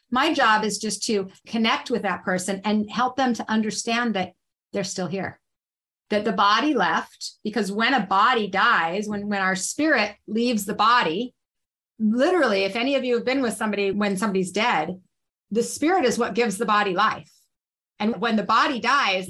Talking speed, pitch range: 185 wpm, 195-240 Hz